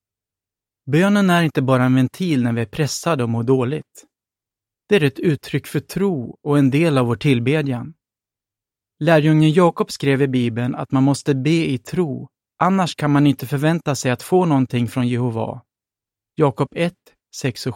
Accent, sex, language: native, male, Swedish